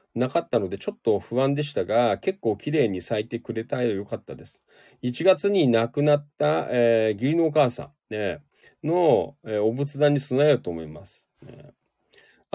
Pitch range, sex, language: 110-150 Hz, male, Japanese